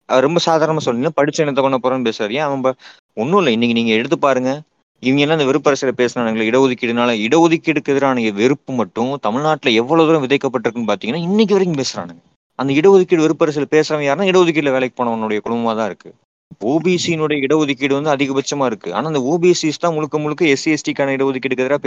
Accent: native